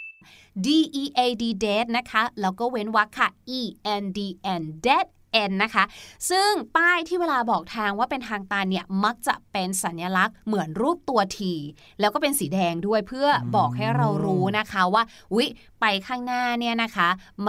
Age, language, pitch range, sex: 20-39, Thai, 195-270 Hz, female